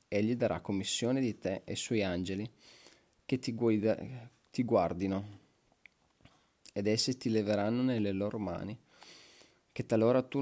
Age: 30-49